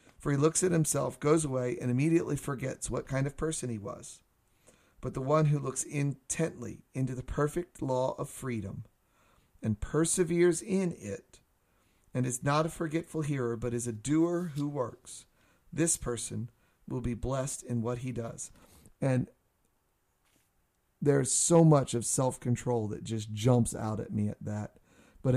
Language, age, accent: English, 40-59, American